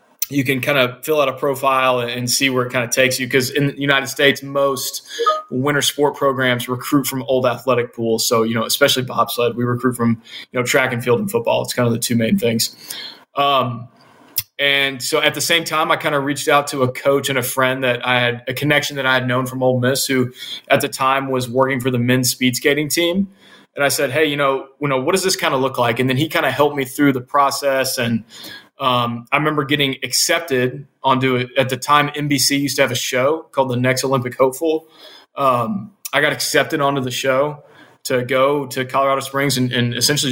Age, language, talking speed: 20-39, English, 230 wpm